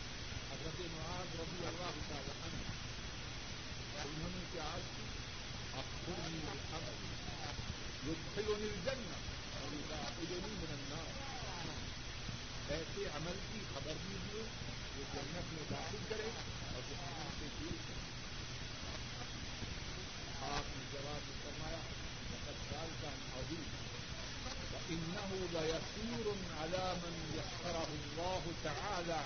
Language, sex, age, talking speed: Urdu, male, 50-69, 85 wpm